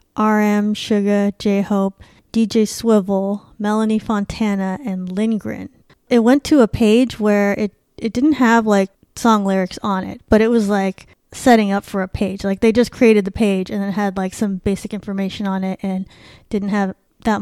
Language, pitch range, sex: English, 190-220 Hz, female